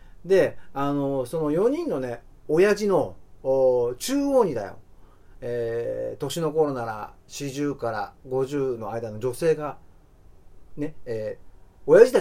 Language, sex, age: Japanese, male, 40-59